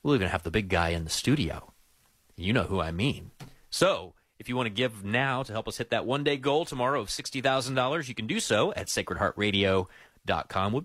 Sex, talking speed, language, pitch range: male, 230 wpm, English, 95-130 Hz